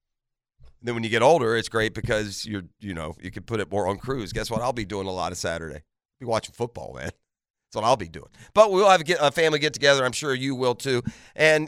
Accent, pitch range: American, 115-155 Hz